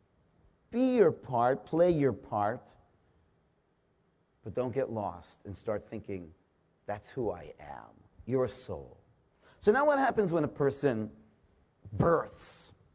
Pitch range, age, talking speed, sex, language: 105-150 Hz, 50-69, 125 wpm, male, English